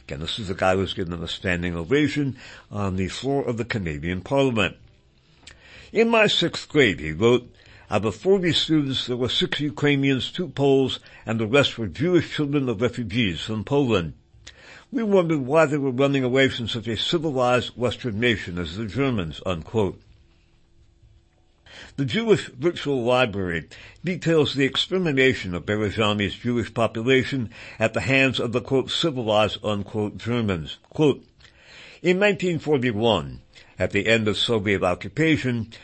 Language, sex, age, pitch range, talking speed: English, male, 60-79, 105-140 Hz, 150 wpm